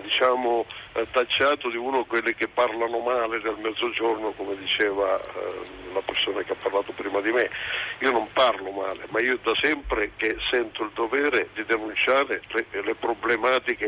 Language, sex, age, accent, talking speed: Italian, male, 60-79, native, 170 wpm